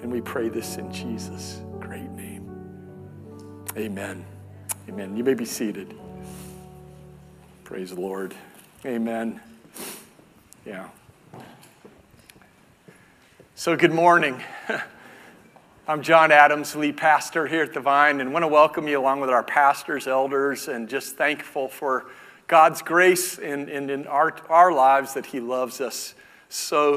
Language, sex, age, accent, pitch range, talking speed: English, male, 50-69, American, 130-175 Hz, 130 wpm